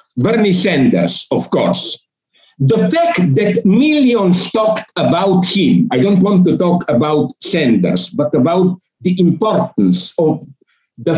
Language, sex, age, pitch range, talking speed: English, male, 60-79, 175-225 Hz, 130 wpm